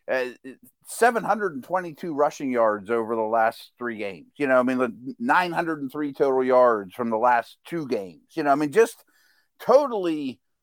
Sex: male